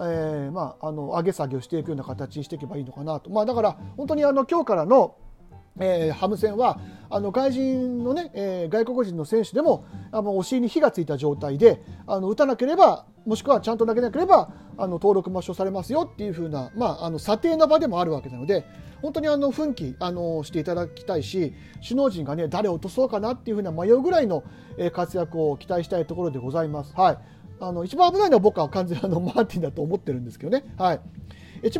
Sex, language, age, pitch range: male, Japanese, 40-59, 160-245 Hz